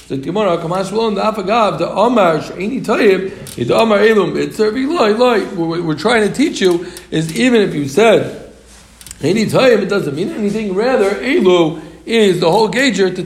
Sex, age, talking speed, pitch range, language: male, 60-79, 180 wpm, 155-195 Hz, English